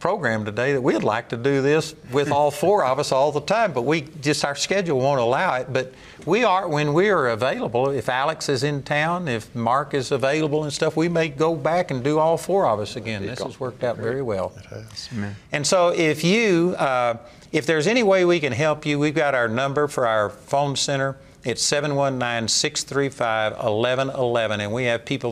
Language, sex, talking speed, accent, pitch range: English, male, 205 wpm, American, 115-155 Hz